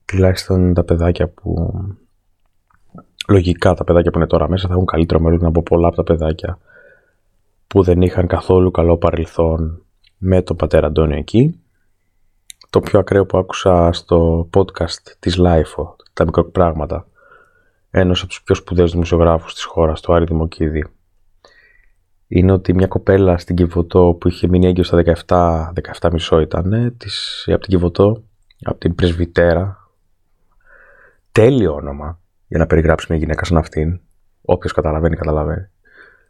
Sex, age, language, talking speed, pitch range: male, 20-39, Greek, 145 wpm, 85-95 Hz